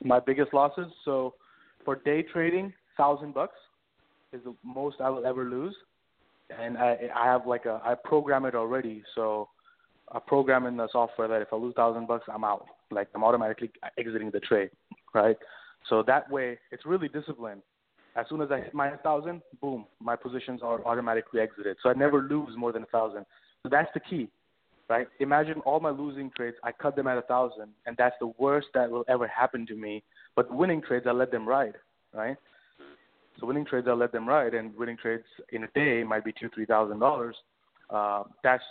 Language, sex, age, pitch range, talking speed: English, male, 20-39, 110-135 Hz, 200 wpm